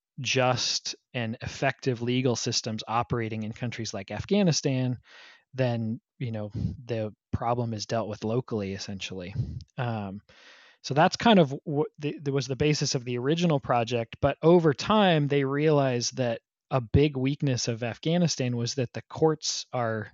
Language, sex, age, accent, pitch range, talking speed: English, male, 20-39, American, 115-140 Hz, 150 wpm